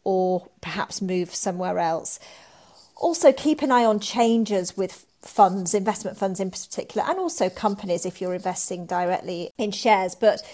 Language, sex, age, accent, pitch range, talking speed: English, female, 40-59, British, 185-220 Hz, 155 wpm